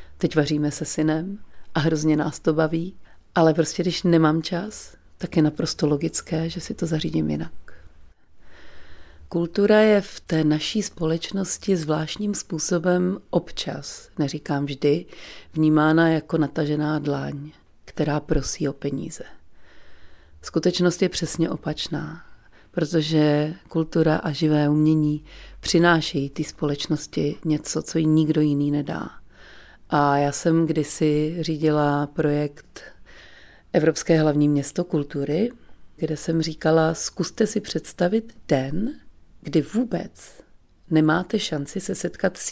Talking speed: 120 wpm